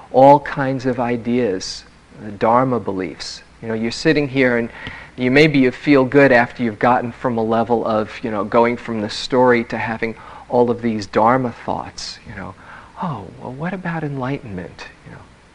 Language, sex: English, male